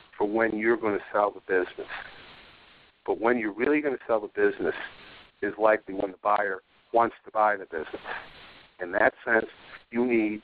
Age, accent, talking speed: 50-69, American, 170 wpm